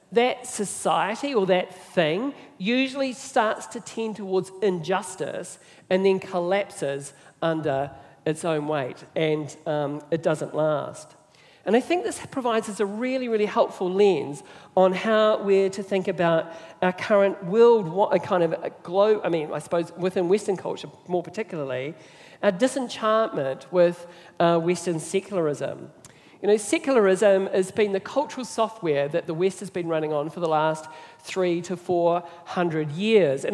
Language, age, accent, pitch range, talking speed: English, 50-69, Australian, 170-215 Hz, 155 wpm